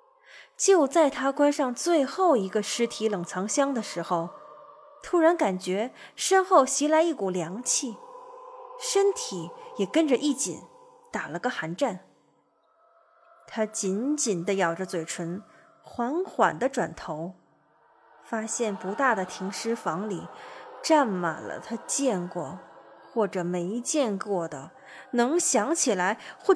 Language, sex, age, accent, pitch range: Chinese, female, 20-39, native, 200-305 Hz